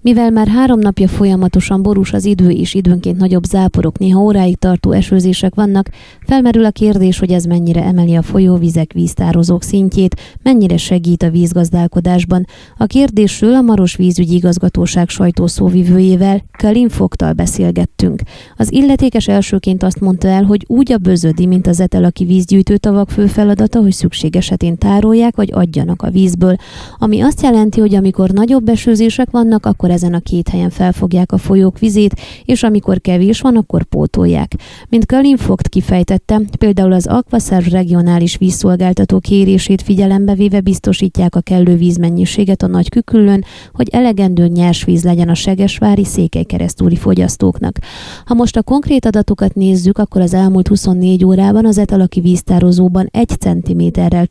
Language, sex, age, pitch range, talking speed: Hungarian, female, 20-39, 180-210 Hz, 150 wpm